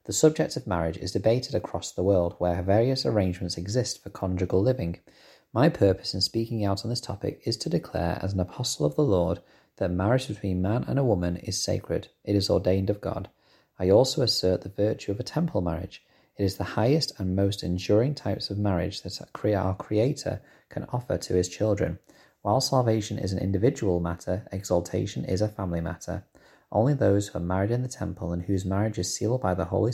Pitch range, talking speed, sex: 90-115 Hz, 200 wpm, male